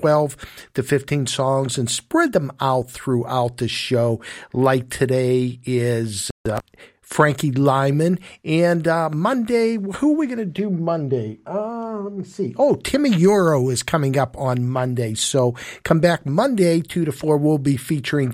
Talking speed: 155 wpm